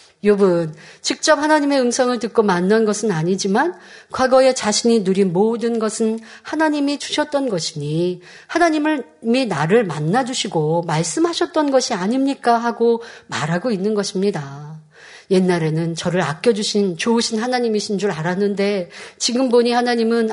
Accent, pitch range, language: native, 195-265 Hz, Korean